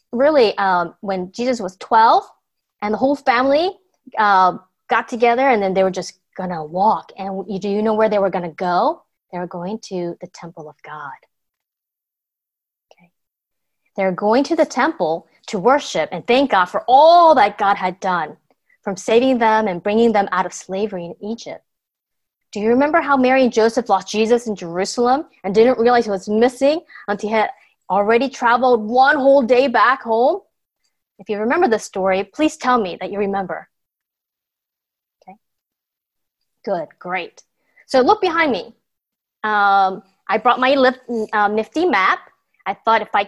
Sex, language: female, English